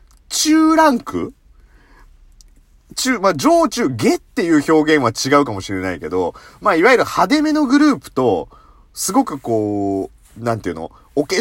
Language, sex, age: Japanese, male, 40-59